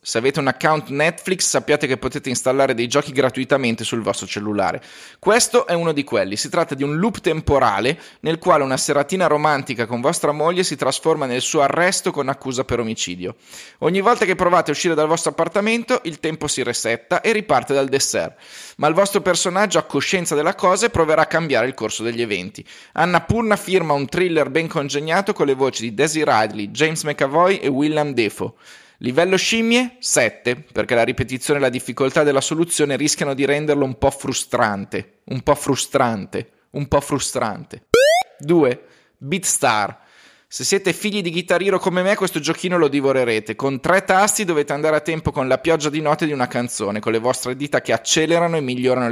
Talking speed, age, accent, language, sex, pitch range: 185 wpm, 30-49, native, Italian, male, 130-170 Hz